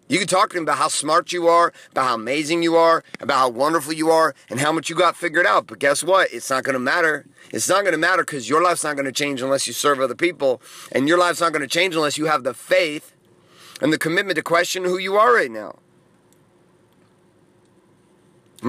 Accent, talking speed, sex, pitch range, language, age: American, 230 wpm, male, 145-180 Hz, English, 30-49